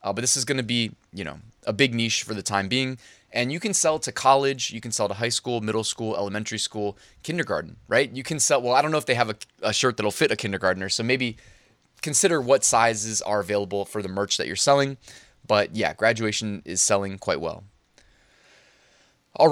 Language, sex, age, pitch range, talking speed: English, male, 20-39, 100-125 Hz, 225 wpm